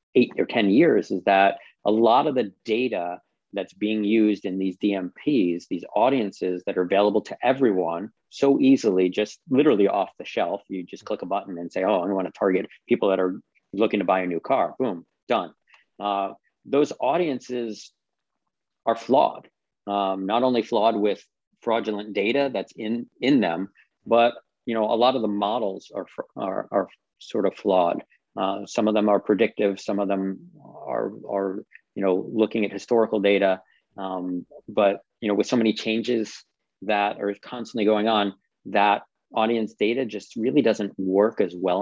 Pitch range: 95-110 Hz